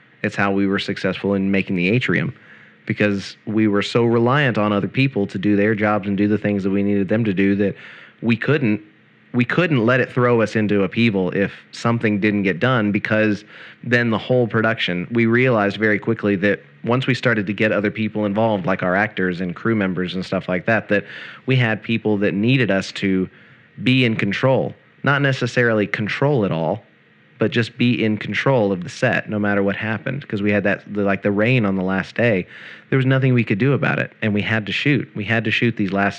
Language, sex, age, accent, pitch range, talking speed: English, male, 30-49, American, 100-120 Hz, 220 wpm